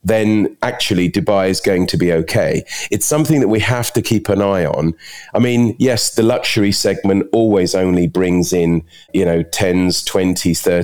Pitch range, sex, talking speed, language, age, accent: 85-105 Hz, male, 175 wpm, English, 30-49, British